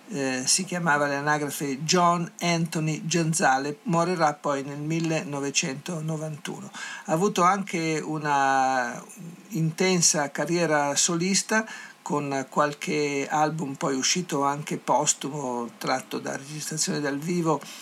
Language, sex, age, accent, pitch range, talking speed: Italian, male, 50-69, native, 145-175 Hz, 100 wpm